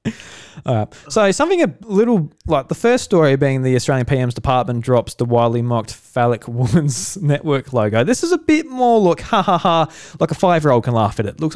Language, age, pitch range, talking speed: English, 20-39, 120-160 Hz, 215 wpm